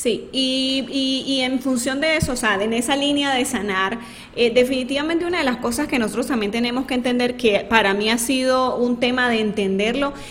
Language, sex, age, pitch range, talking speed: Spanish, female, 20-39, 230-275 Hz, 210 wpm